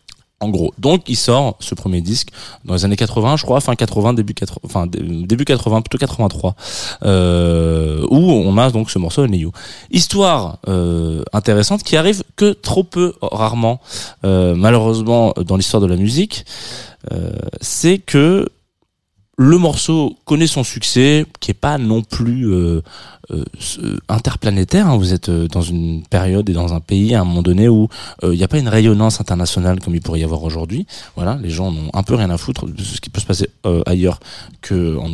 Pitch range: 90-120 Hz